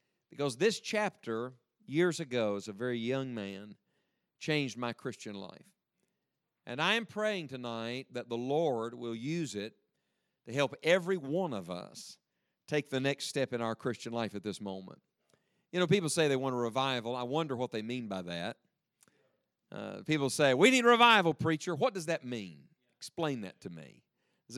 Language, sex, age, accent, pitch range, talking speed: English, male, 50-69, American, 120-175 Hz, 180 wpm